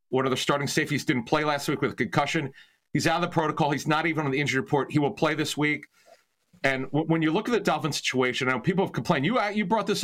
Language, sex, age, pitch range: English, male, 40-59, 130-160 Hz